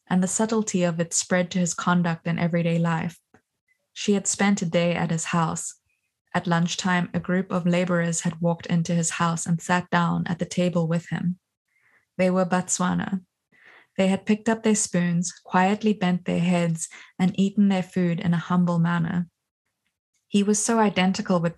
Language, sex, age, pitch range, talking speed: English, female, 20-39, 175-195 Hz, 180 wpm